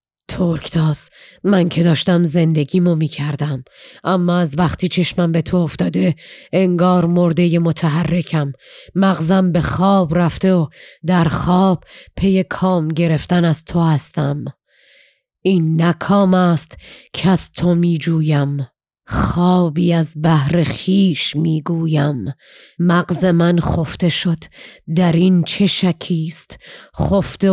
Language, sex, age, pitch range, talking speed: Persian, female, 30-49, 160-185 Hz, 110 wpm